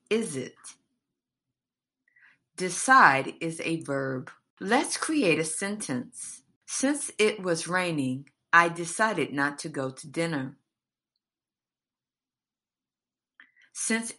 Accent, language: American, English